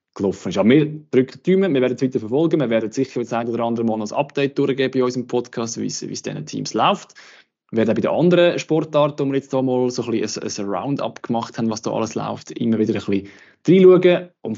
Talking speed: 245 wpm